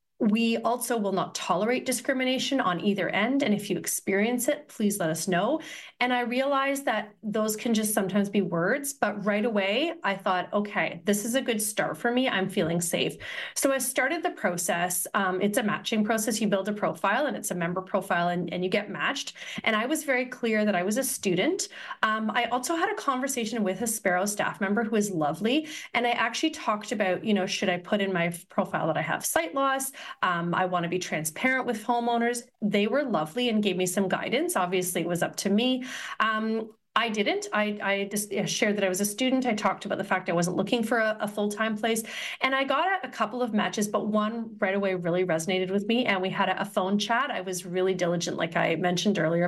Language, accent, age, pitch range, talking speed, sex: English, American, 30-49, 185-245 Hz, 230 wpm, female